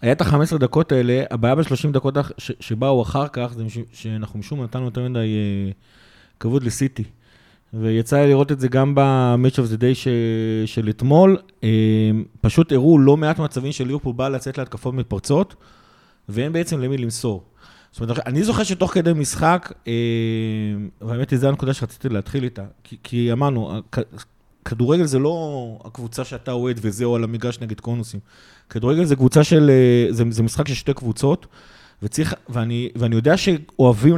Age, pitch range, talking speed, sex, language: 30-49, 115-140 Hz, 160 wpm, male, Hebrew